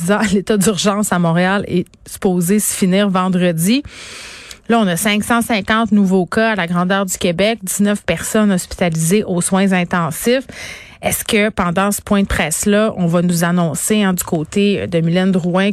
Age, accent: 30-49, Canadian